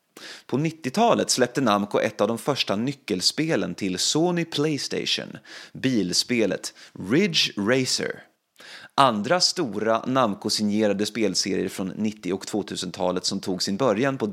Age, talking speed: 30-49, 115 wpm